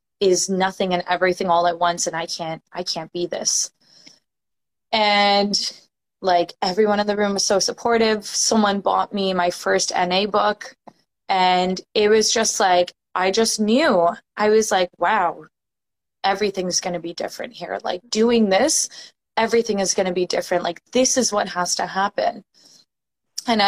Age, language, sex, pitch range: 20-39, English, female, 180-220 Hz